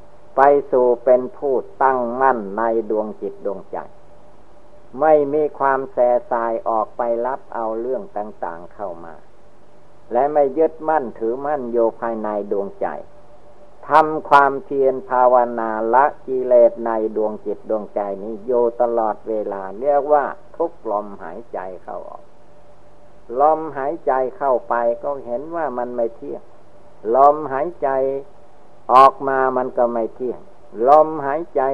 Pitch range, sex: 115-140 Hz, male